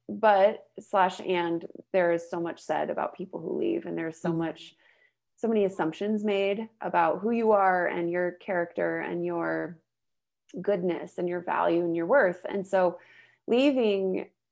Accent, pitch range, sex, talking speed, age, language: American, 170-205 Hz, female, 160 wpm, 20-39, English